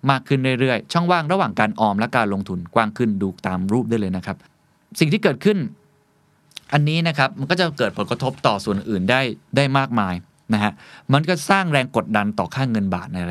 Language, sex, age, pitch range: Thai, male, 20-39, 105-145 Hz